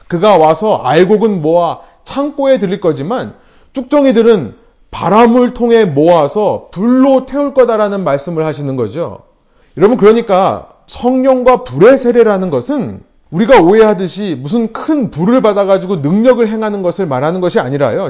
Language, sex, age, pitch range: Korean, male, 30-49, 160-235 Hz